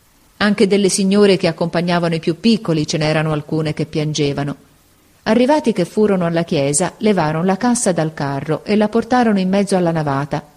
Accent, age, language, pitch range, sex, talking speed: native, 40-59, Italian, 150-205 Hz, female, 170 wpm